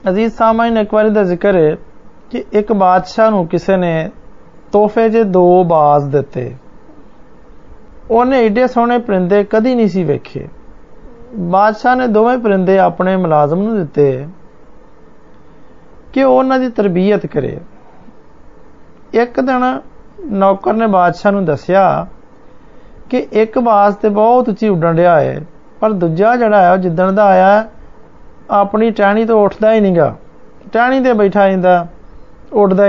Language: Hindi